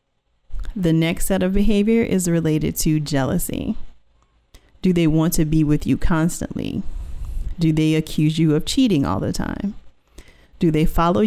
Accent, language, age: American, English, 40-59